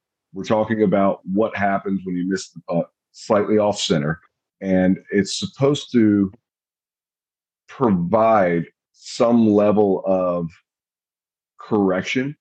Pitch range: 95-110 Hz